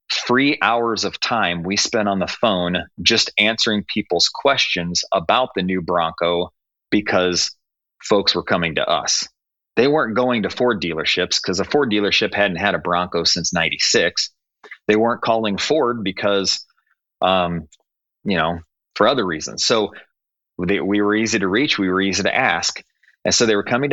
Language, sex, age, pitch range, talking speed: English, male, 30-49, 90-115 Hz, 165 wpm